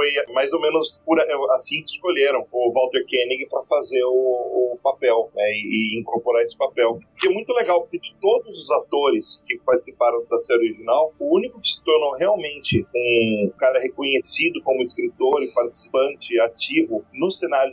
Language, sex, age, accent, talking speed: Portuguese, male, 40-59, Brazilian, 165 wpm